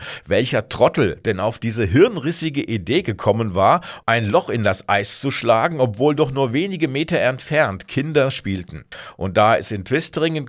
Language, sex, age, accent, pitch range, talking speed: German, male, 50-69, German, 105-145 Hz, 165 wpm